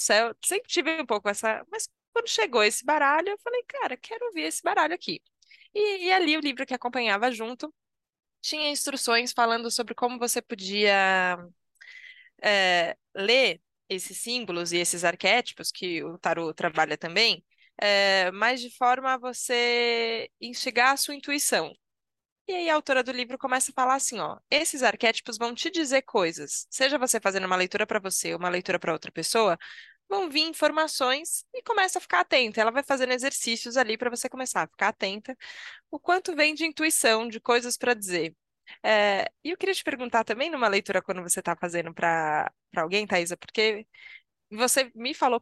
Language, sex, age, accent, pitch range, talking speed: Portuguese, female, 20-39, Brazilian, 200-295 Hz, 175 wpm